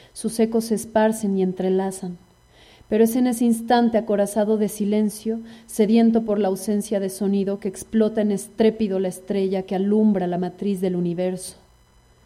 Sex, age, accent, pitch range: female, 30-49, Mexican, 190-215 Hz